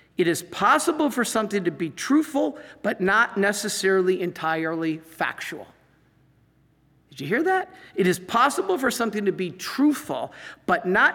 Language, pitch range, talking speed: English, 185-245 Hz, 145 wpm